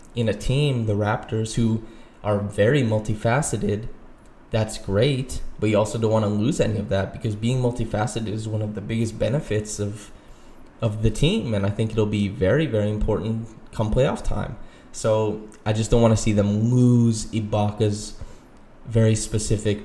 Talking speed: 170 wpm